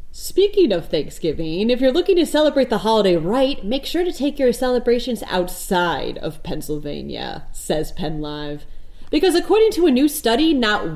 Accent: American